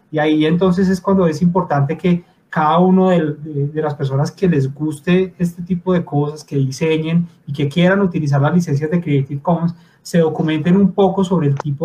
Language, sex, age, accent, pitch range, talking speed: Spanish, male, 30-49, Colombian, 150-180 Hz, 190 wpm